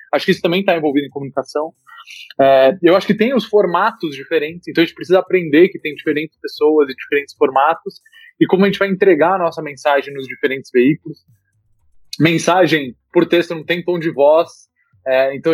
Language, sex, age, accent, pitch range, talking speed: Portuguese, male, 20-39, Brazilian, 135-190 Hz, 195 wpm